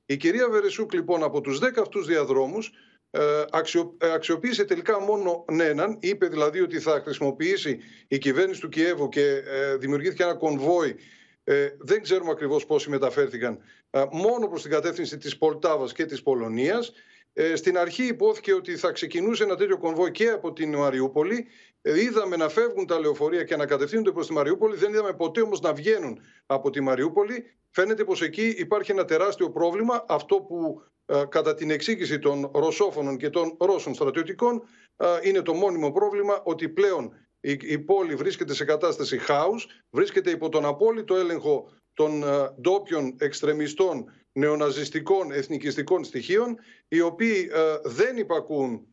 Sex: male